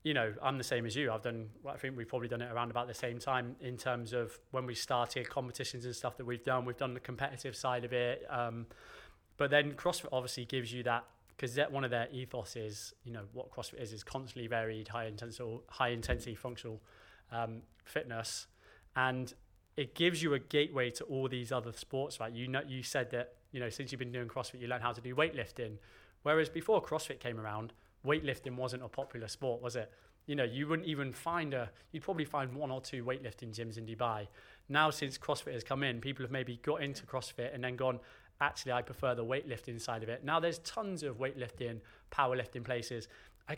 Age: 20-39